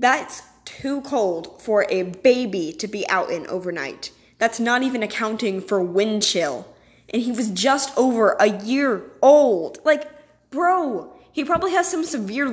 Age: 10-29